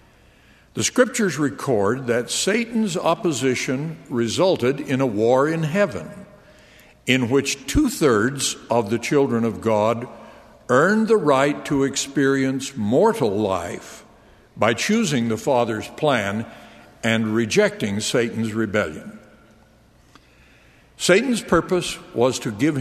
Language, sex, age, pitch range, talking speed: English, male, 60-79, 115-170 Hz, 110 wpm